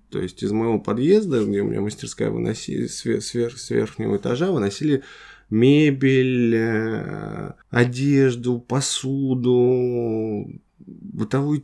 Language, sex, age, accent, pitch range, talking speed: Russian, male, 20-39, native, 105-135 Hz, 100 wpm